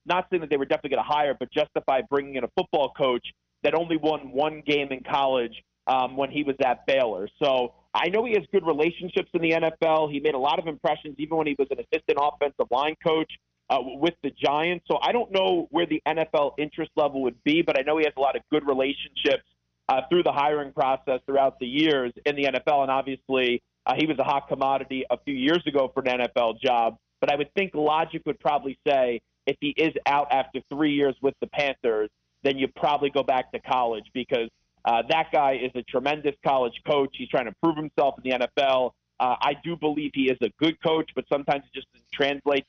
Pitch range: 130-155 Hz